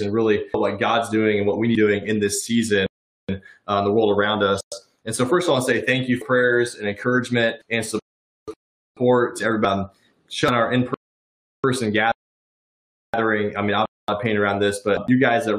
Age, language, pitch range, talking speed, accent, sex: 20-39, English, 100-120 Hz, 220 wpm, American, male